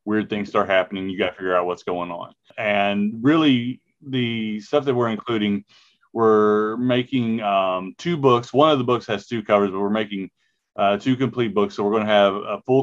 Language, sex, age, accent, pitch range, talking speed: English, male, 30-49, American, 100-120 Hz, 210 wpm